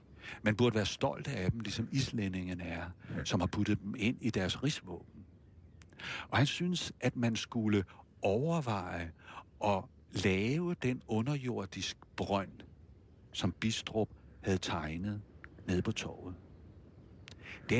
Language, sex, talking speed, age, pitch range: Danish, male, 125 wpm, 60-79, 95-125 Hz